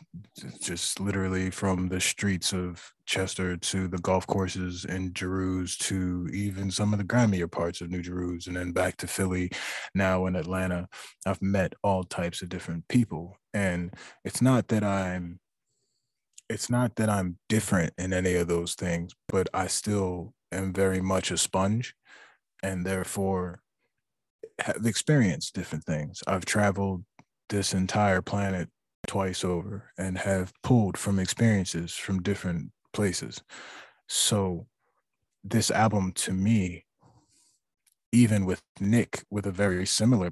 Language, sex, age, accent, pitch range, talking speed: English, male, 20-39, American, 90-100 Hz, 140 wpm